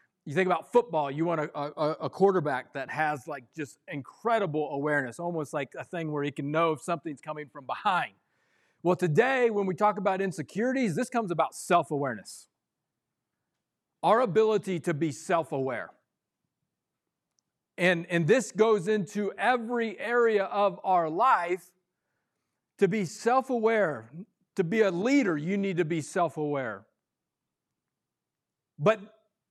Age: 40-59